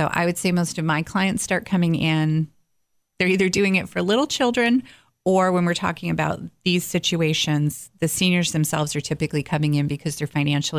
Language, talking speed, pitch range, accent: English, 195 wpm, 145-180 Hz, American